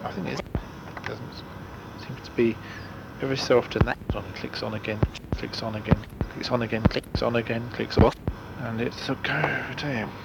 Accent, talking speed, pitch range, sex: British, 200 wpm, 105-135 Hz, male